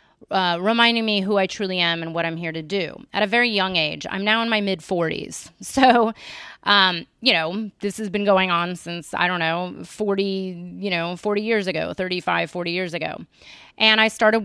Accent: American